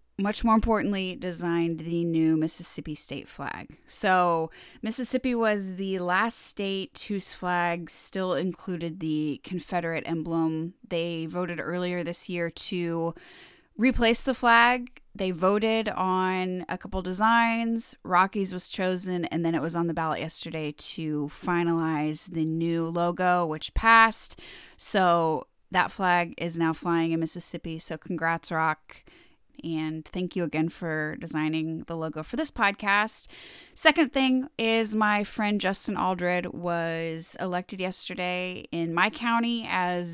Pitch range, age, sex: 165-195 Hz, 20-39, female